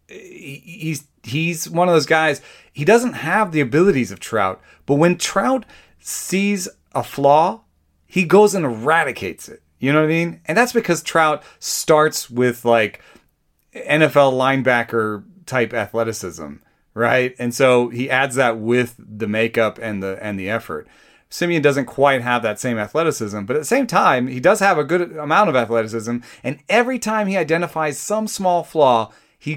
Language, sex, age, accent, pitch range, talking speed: English, male, 30-49, American, 125-195 Hz, 170 wpm